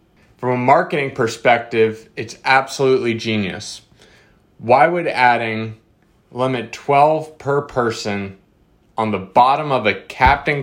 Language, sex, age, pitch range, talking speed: English, male, 20-39, 110-145 Hz, 115 wpm